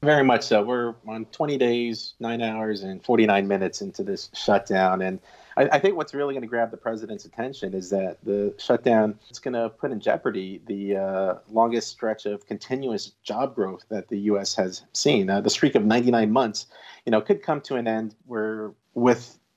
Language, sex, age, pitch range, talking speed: English, male, 40-59, 100-115 Hz, 200 wpm